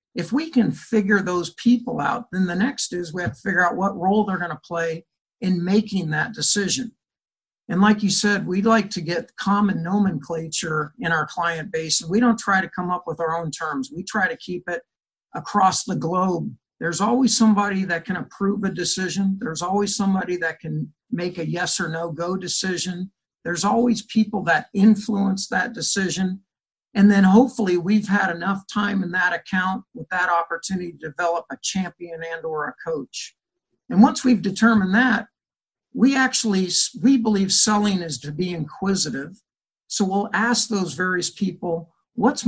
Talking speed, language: 180 wpm, English